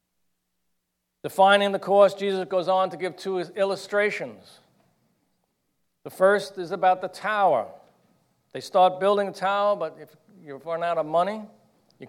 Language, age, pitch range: English, 50-69, 145-185 Hz